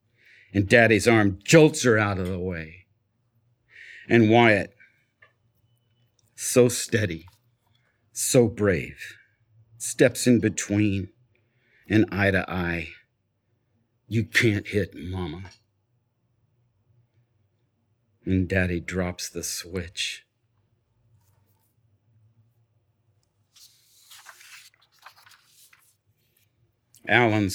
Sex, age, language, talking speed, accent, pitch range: male, 50-69, English, 70 wpm, American, 105-120 Hz